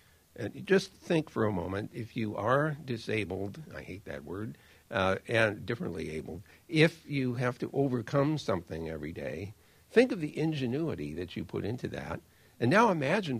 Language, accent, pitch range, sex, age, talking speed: English, American, 90-125 Hz, male, 60-79, 165 wpm